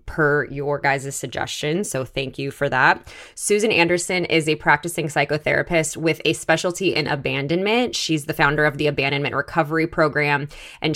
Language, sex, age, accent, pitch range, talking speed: English, female, 20-39, American, 140-160 Hz, 160 wpm